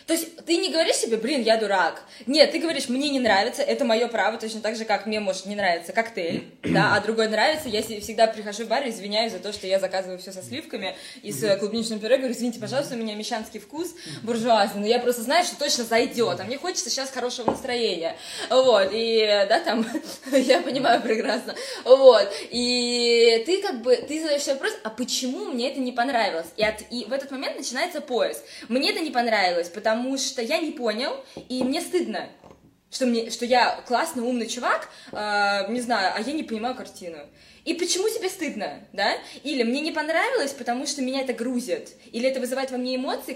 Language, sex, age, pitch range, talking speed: Russian, female, 20-39, 220-275 Hz, 200 wpm